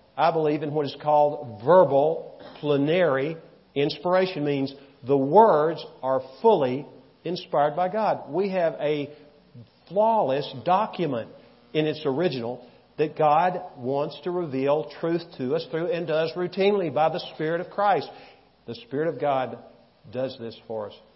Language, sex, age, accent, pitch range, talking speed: English, male, 50-69, American, 130-170 Hz, 140 wpm